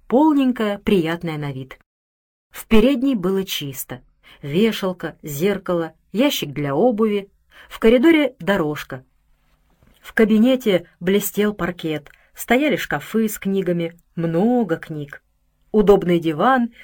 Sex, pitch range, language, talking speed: female, 150-230 Hz, Russian, 100 wpm